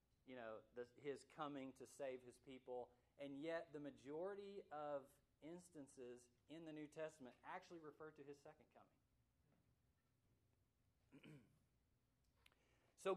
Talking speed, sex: 115 wpm, male